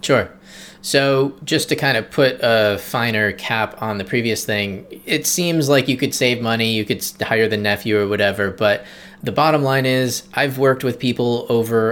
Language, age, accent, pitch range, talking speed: English, 20-39, American, 105-130 Hz, 190 wpm